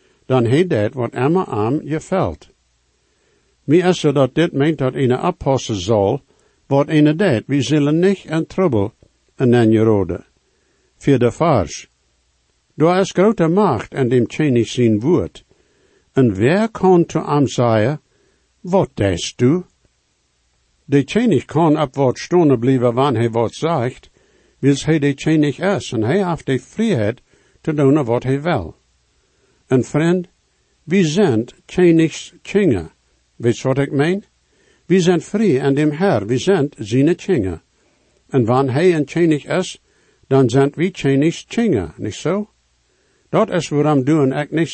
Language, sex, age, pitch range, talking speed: English, male, 60-79, 125-170 Hz, 160 wpm